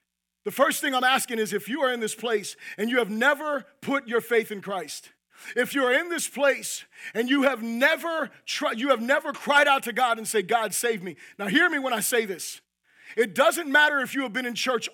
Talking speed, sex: 235 wpm, male